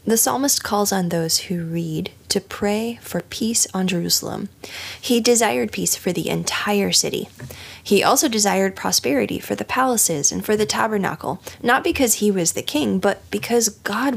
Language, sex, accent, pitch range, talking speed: English, female, American, 155-210 Hz, 170 wpm